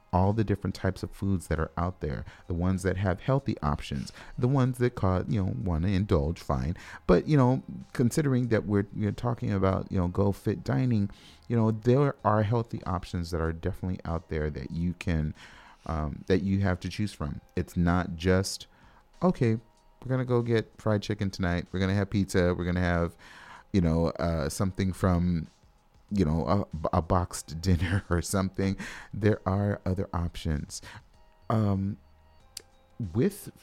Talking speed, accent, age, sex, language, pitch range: 180 wpm, American, 30-49, male, English, 85-105 Hz